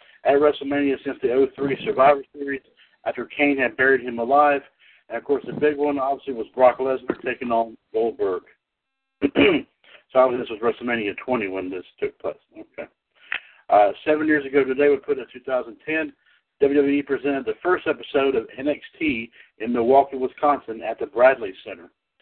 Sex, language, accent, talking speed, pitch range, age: male, English, American, 160 wpm, 130-155 Hz, 60-79